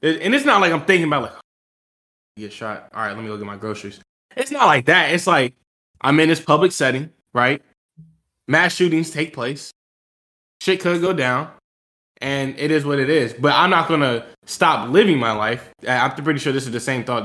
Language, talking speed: English, 210 wpm